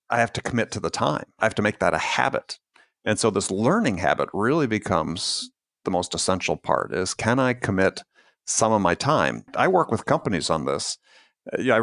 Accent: American